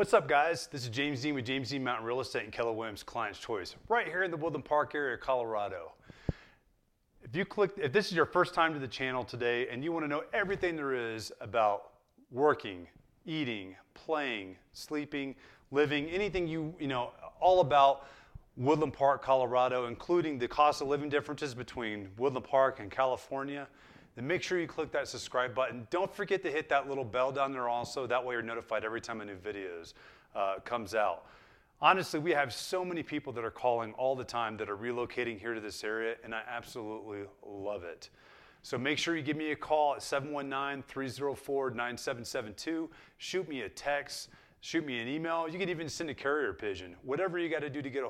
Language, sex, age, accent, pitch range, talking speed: English, male, 30-49, American, 120-155 Hz, 200 wpm